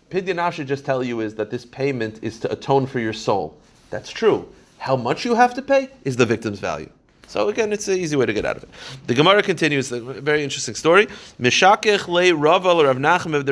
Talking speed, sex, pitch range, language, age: 220 wpm, male, 130-185 Hz, English, 30-49